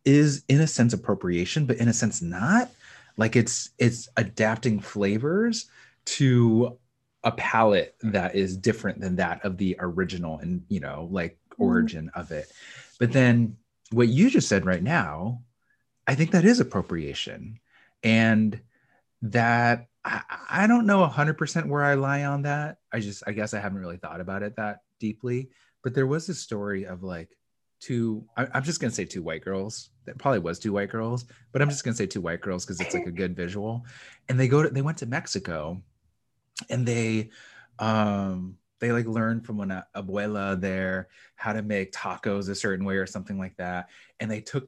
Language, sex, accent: English, male, American